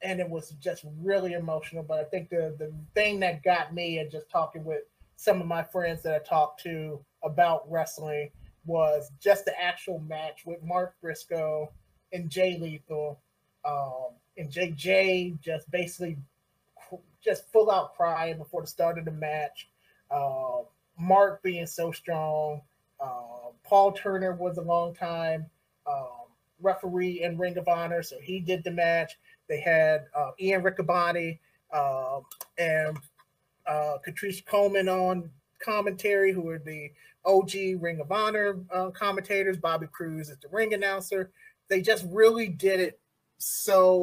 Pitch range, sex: 160-190 Hz, male